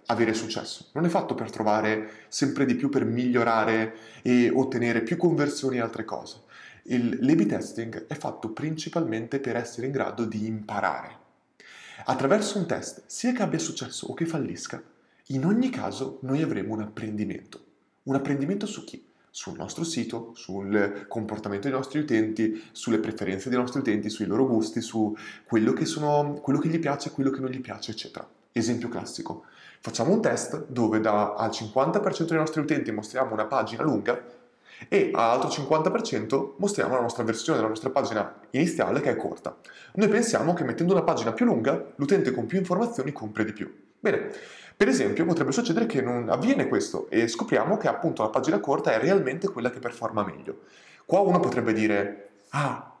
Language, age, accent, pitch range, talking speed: Italian, 30-49, native, 110-145 Hz, 175 wpm